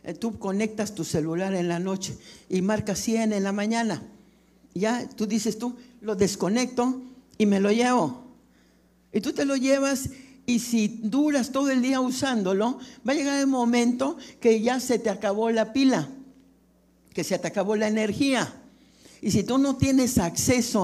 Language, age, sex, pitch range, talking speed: Spanish, 60-79, male, 200-250 Hz, 170 wpm